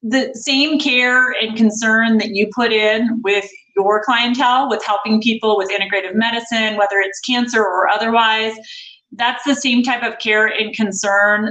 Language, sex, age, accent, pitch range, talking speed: English, female, 30-49, American, 195-245 Hz, 160 wpm